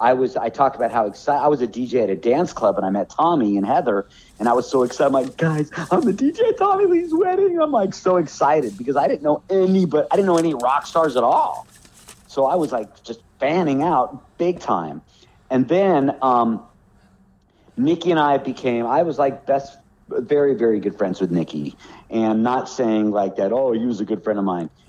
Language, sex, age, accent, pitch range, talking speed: English, male, 50-69, American, 105-150 Hz, 225 wpm